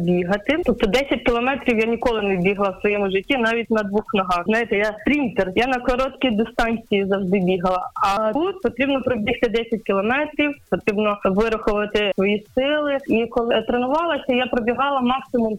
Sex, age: female, 20-39